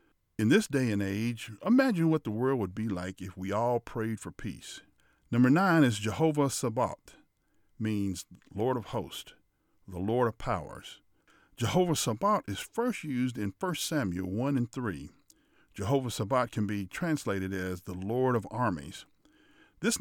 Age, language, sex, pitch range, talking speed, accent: 50-69, English, male, 105-150 Hz, 160 wpm, American